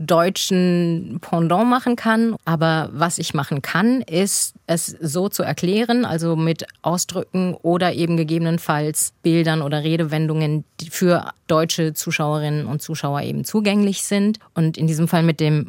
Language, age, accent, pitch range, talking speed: German, 30-49, German, 155-185 Hz, 145 wpm